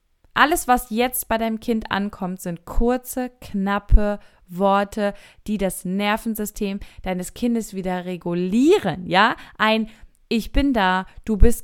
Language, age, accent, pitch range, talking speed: German, 20-39, German, 190-240 Hz, 130 wpm